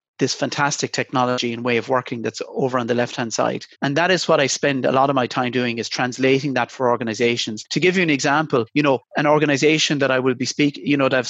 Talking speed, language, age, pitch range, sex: 255 wpm, English, 30-49, 125-155 Hz, male